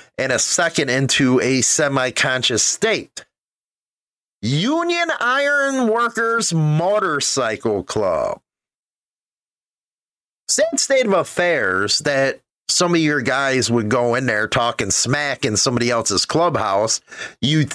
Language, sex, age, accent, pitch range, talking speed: English, male, 30-49, American, 135-200 Hz, 110 wpm